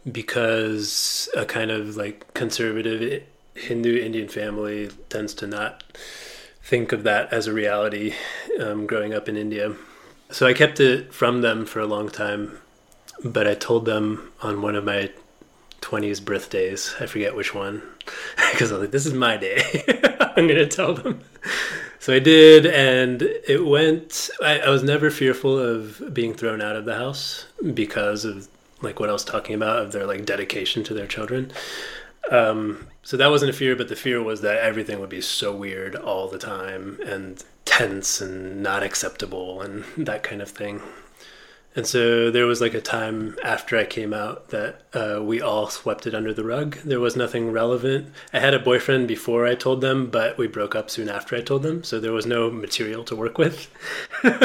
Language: English